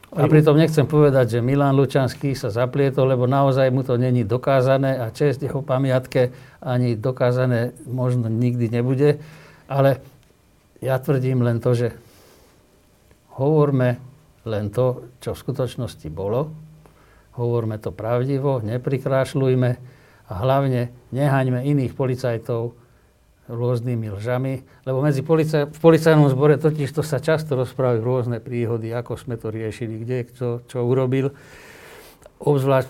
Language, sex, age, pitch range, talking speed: Slovak, male, 60-79, 120-135 Hz, 130 wpm